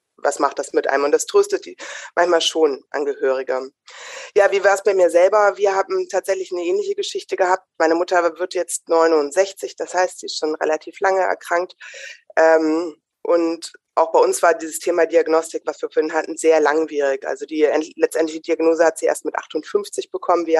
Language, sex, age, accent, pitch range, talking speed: German, female, 20-39, German, 155-205 Hz, 185 wpm